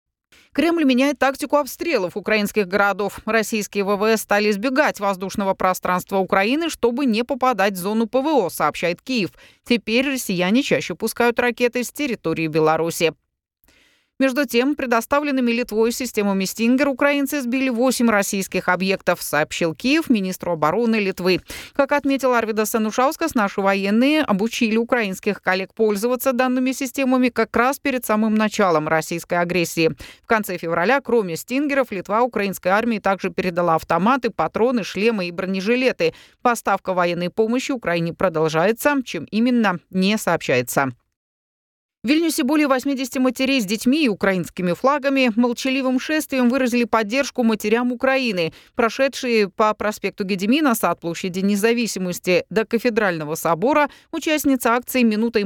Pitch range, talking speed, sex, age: 185-255 Hz, 125 wpm, female, 30-49